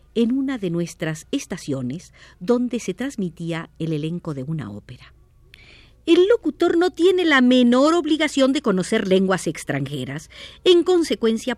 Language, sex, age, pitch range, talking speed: Spanish, female, 50-69, 160-255 Hz, 135 wpm